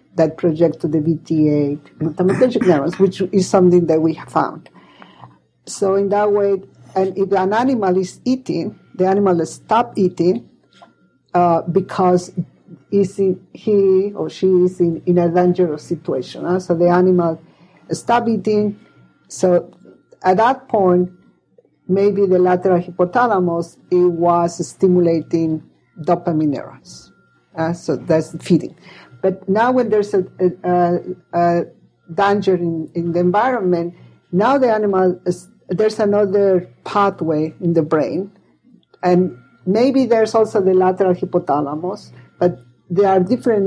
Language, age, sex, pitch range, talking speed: English, 50-69, female, 170-195 Hz, 130 wpm